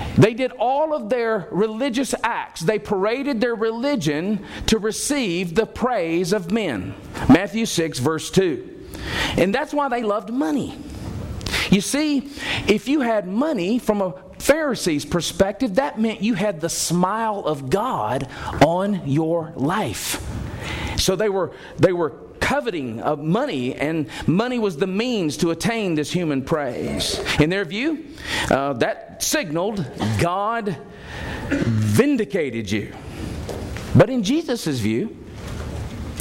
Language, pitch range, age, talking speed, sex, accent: English, 135-225 Hz, 40-59, 130 wpm, male, American